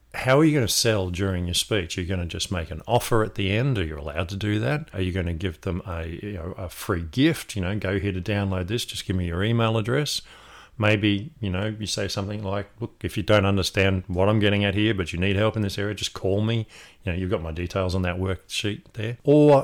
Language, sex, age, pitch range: English, male, 40-59, 95-110 Hz